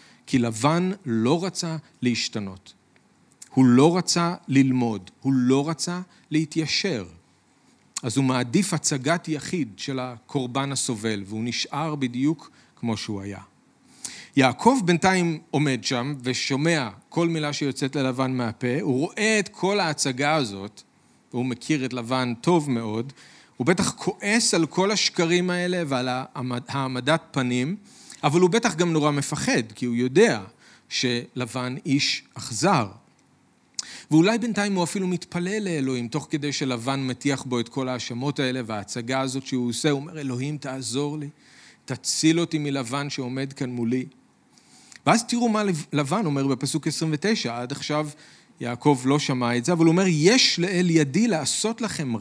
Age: 40-59